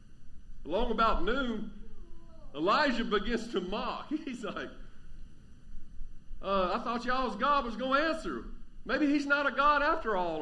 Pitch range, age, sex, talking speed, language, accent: 195-275 Hz, 50-69, male, 145 wpm, English, American